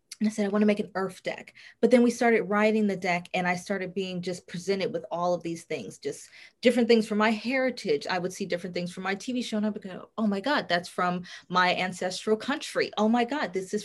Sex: female